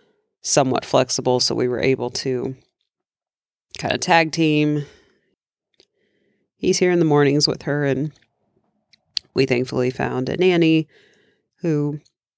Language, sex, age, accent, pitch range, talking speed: English, female, 40-59, American, 125-150 Hz, 120 wpm